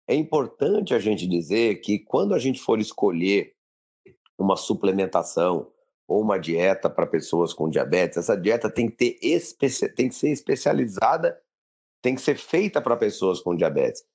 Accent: Brazilian